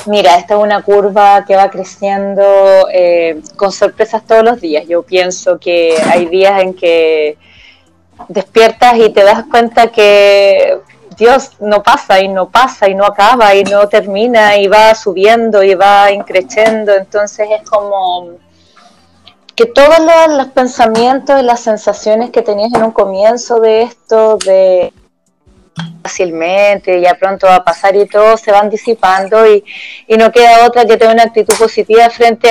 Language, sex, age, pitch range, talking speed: English, female, 20-39, 190-230 Hz, 155 wpm